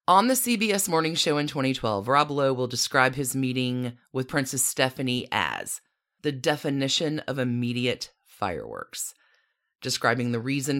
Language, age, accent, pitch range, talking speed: English, 30-49, American, 130-200 Hz, 140 wpm